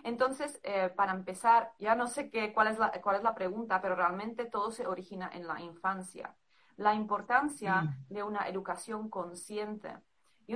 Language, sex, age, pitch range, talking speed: Spanish, female, 30-49, 175-215 Hz, 155 wpm